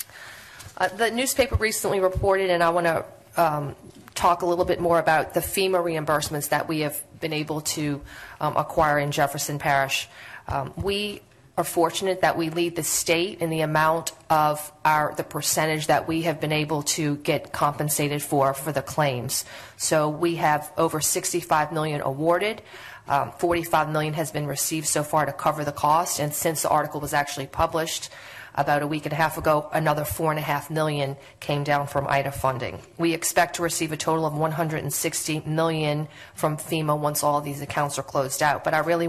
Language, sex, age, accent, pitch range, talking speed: English, female, 40-59, American, 145-165 Hz, 185 wpm